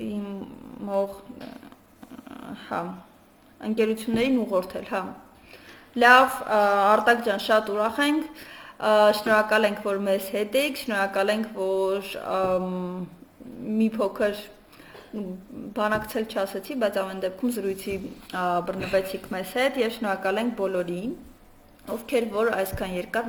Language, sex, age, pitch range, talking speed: Russian, female, 20-39, 190-235 Hz, 85 wpm